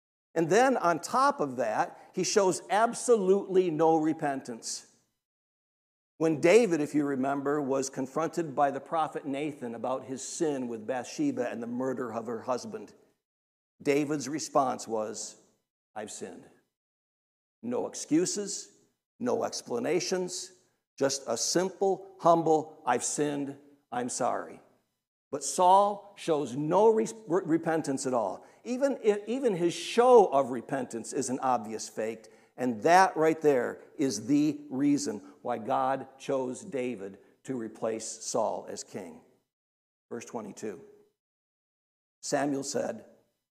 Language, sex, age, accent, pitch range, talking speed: English, male, 60-79, American, 130-185 Hz, 125 wpm